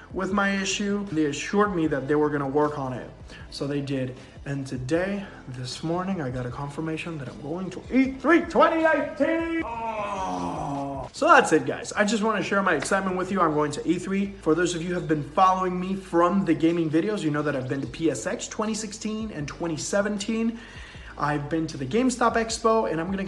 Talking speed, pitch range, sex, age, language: 205 wpm, 155-205 Hz, male, 20-39, English